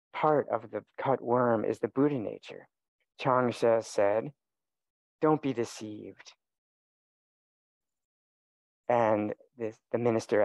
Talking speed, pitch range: 100 wpm, 105-130 Hz